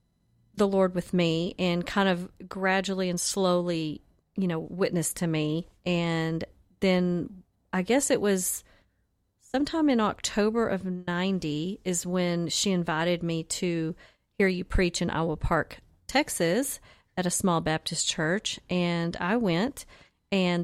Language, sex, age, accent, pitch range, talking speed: English, female, 40-59, American, 165-185 Hz, 140 wpm